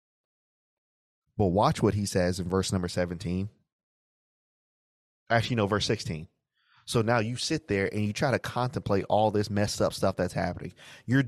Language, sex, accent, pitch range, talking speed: English, male, American, 95-115 Hz, 165 wpm